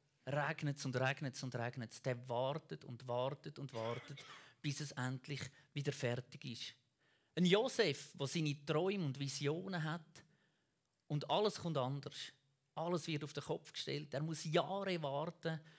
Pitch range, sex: 130-170 Hz, male